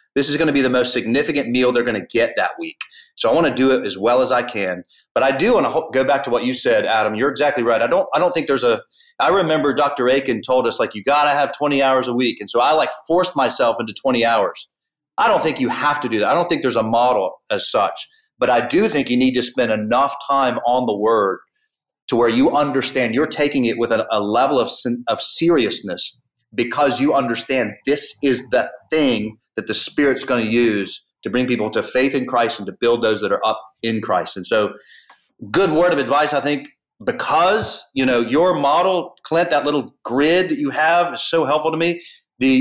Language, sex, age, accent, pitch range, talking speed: English, male, 30-49, American, 120-145 Hz, 240 wpm